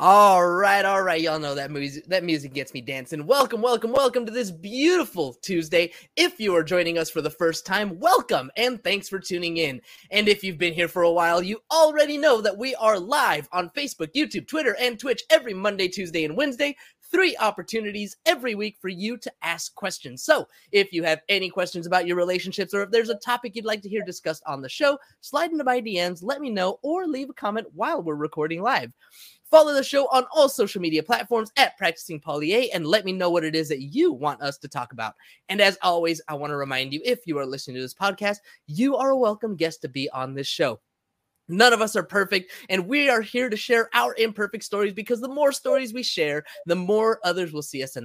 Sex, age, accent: male, 20-39, American